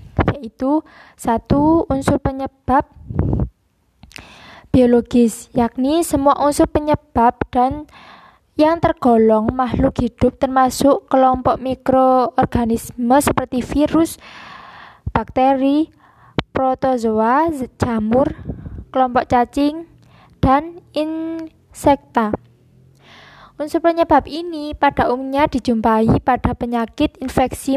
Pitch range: 245-290 Hz